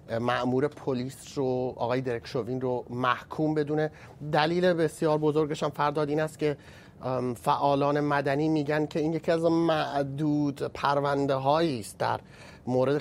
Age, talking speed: 30-49, 125 wpm